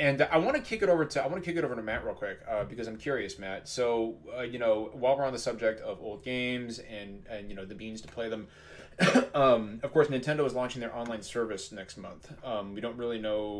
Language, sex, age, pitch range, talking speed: English, male, 30-49, 110-130 Hz, 265 wpm